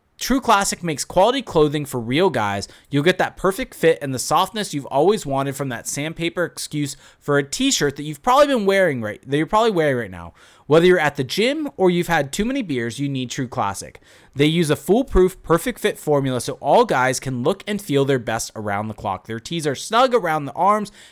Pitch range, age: 125-190 Hz, 20-39